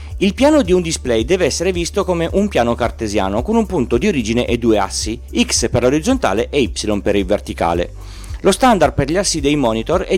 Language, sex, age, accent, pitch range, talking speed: Italian, male, 40-59, native, 100-165 Hz, 210 wpm